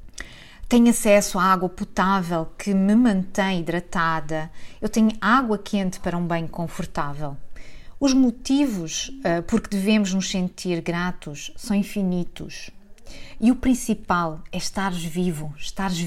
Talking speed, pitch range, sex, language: 130 wpm, 170-220 Hz, female, Portuguese